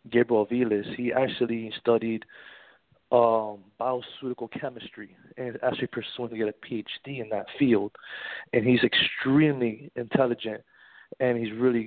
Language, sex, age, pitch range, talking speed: English, male, 30-49, 115-130 Hz, 125 wpm